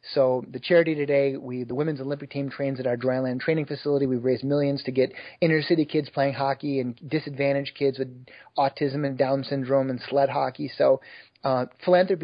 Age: 30-49